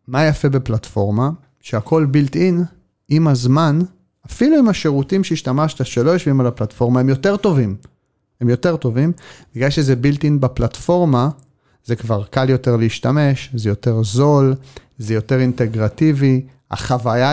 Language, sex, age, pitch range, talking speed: Hebrew, male, 40-59, 115-150 Hz, 135 wpm